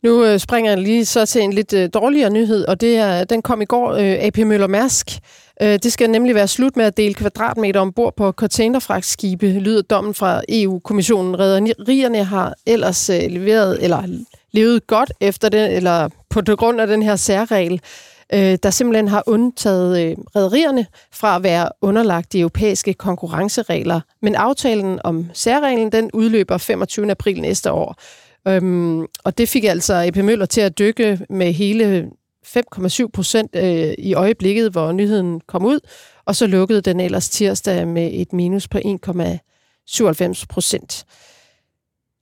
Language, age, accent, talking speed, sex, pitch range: Danish, 30-49, native, 150 wpm, female, 185-220 Hz